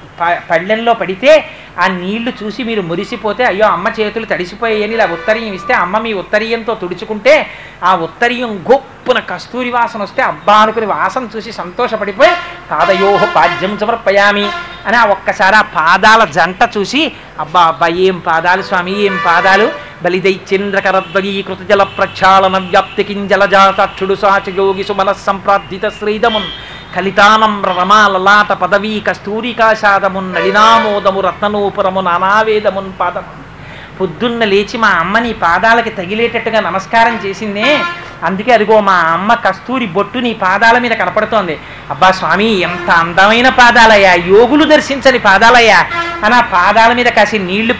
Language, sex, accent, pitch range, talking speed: Telugu, male, native, 190-230 Hz, 120 wpm